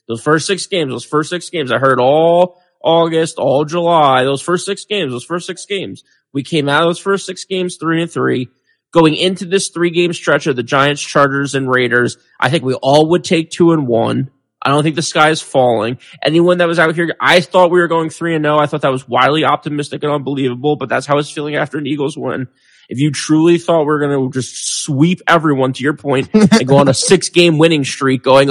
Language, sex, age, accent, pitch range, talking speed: English, male, 20-39, American, 140-180 Hz, 240 wpm